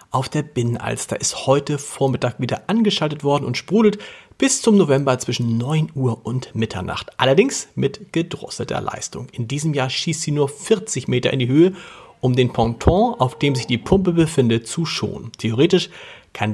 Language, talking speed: German, 170 wpm